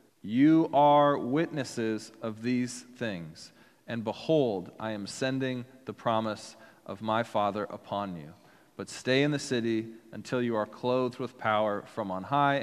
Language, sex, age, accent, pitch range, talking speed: English, male, 30-49, American, 110-135 Hz, 150 wpm